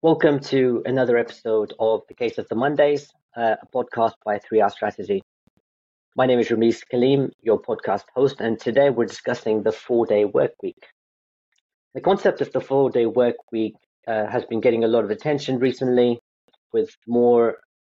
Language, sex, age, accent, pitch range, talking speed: English, male, 30-49, British, 110-135 Hz, 175 wpm